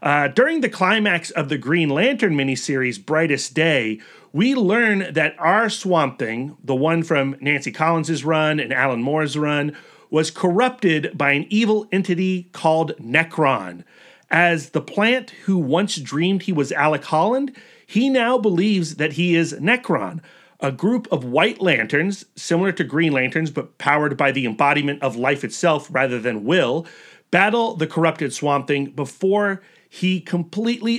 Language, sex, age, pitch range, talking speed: English, male, 40-59, 150-210 Hz, 155 wpm